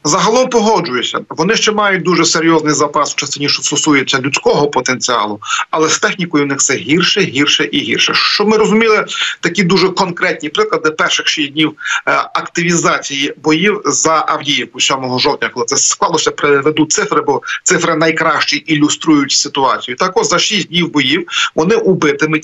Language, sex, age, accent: Ukrainian, male, 40-59, native